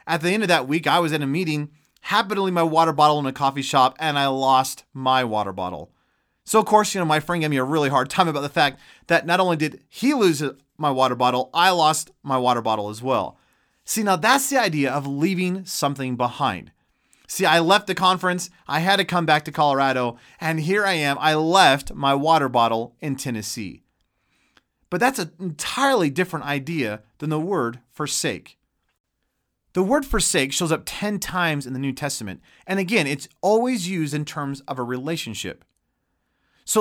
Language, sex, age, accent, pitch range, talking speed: English, male, 30-49, American, 130-180 Hz, 200 wpm